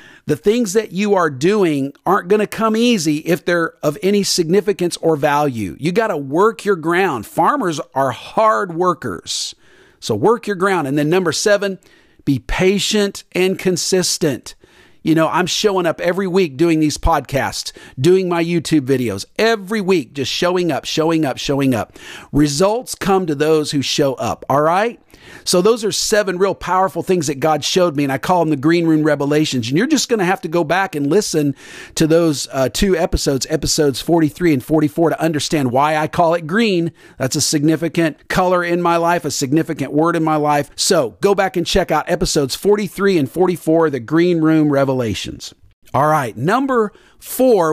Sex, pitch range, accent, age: male, 155-200 Hz, American, 50-69